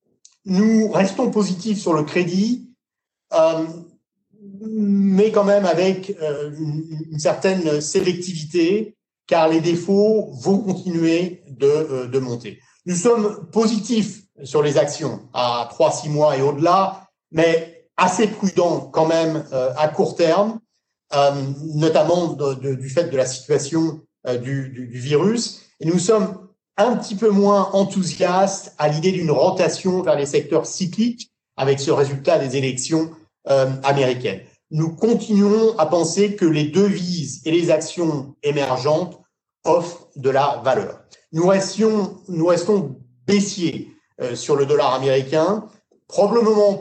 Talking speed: 140 wpm